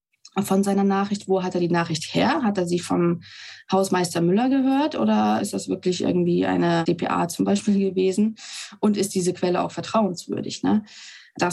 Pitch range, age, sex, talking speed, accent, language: 180-215 Hz, 20-39, female, 175 wpm, German, German